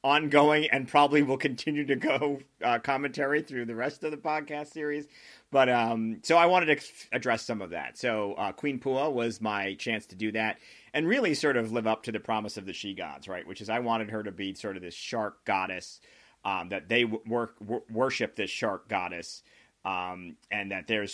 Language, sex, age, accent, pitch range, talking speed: English, male, 40-59, American, 105-125 Hz, 215 wpm